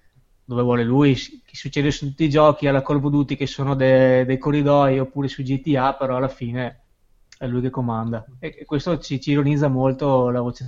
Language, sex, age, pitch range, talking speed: Italian, male, 20-39, 125-150 Hz, 215 wpm